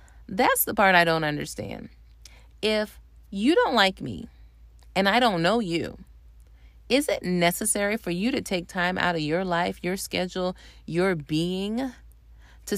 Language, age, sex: English, 30-49, female